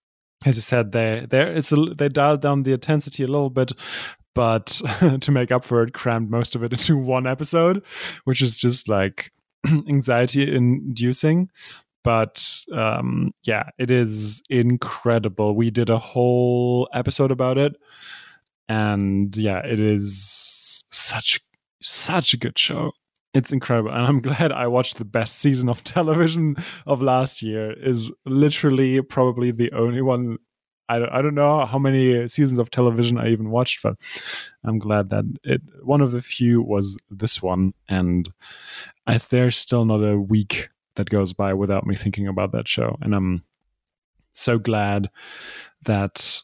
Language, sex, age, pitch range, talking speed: English, male, 20-39, 110-135 Hz, 155 wpm